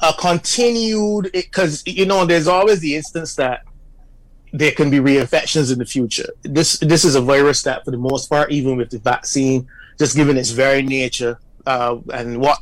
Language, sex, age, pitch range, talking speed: English, male, 30-49, 125-150 Hz, 185 wpm